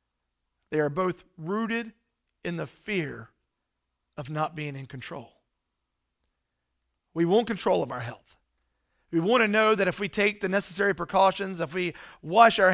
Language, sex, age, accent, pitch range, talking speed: English, male, 40-59, American, 135-210 Hz, 155 wpm